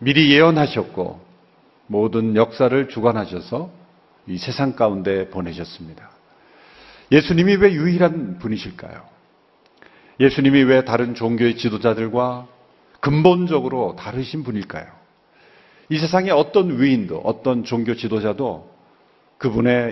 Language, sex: Korean, male